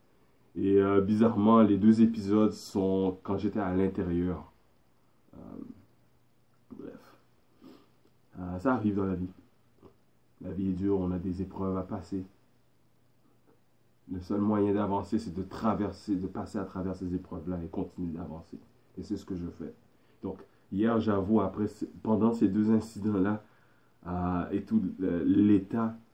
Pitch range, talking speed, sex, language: 90-110 Hz, 140 wpm, male, French